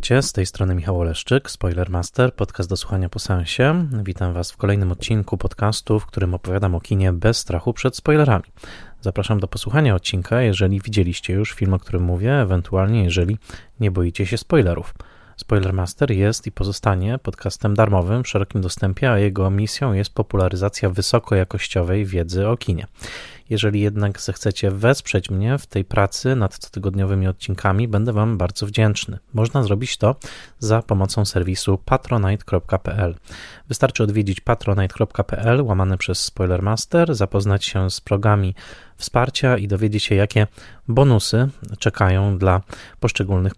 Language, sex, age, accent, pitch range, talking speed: Polish, male, 20-39, native, 95-115 Hz, 140 wpm